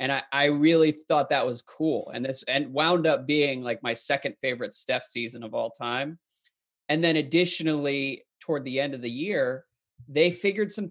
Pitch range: 125-155 Hz